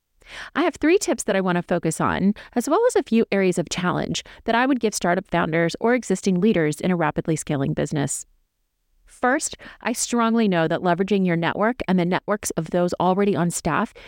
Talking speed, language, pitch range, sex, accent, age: 205 wpm, English, 165-230 Hz, female, American, 30-49